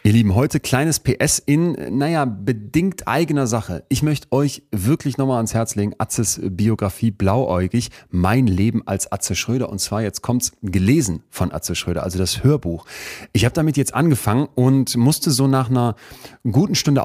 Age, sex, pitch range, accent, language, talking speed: 30-49, male, 100-125 Hz, German, German, 175 wpm